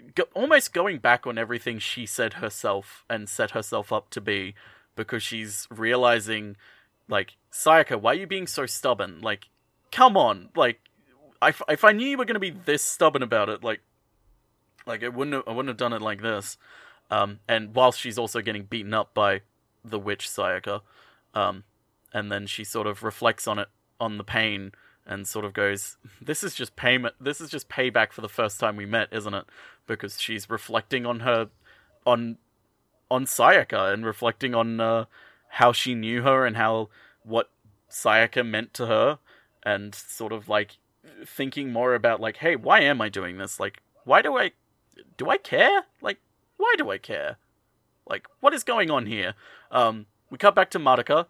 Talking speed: 185 wpm